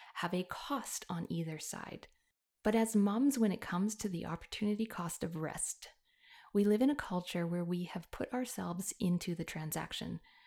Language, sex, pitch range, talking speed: English, female, 175-225 Hz, 180 wpm